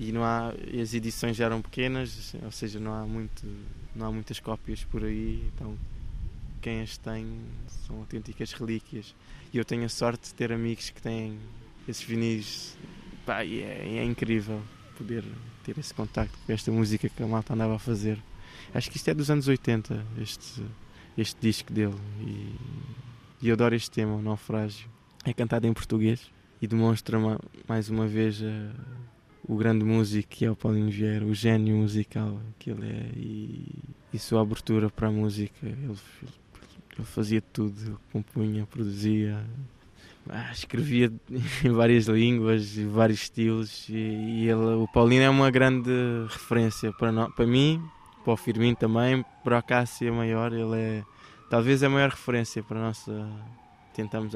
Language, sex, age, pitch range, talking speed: Portuguese, male, 20-39, 110-120 Hz, 160 wpm